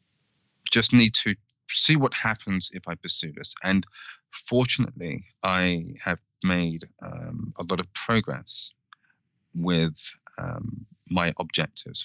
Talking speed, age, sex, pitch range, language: 120 wpm, 30-49, male, 85-100 Hz, English